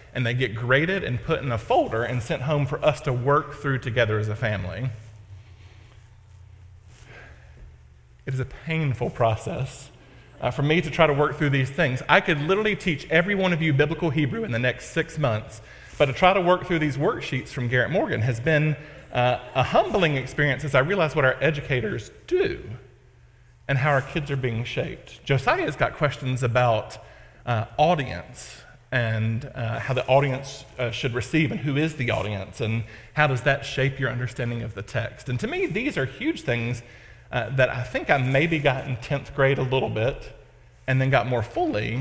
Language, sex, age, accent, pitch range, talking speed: English, male, 40-59, American, 115-145 Hz, 195 wpm